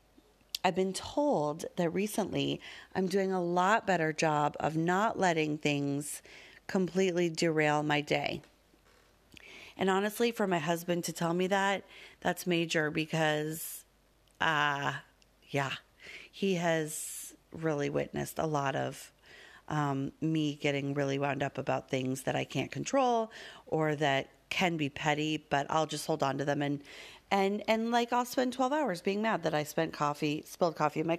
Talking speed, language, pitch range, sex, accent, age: 160 wpm, English, 150-195 Hz, female, American, 30-49